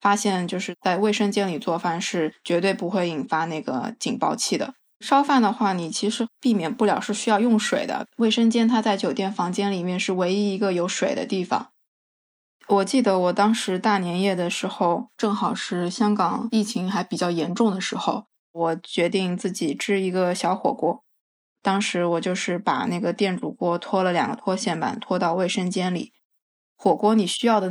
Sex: female